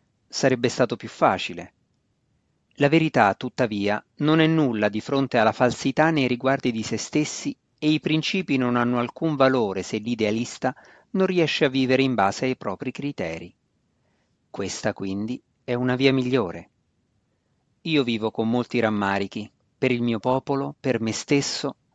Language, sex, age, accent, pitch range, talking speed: Italian, male, 40-59, native, 110-140 Hz, 150 wpm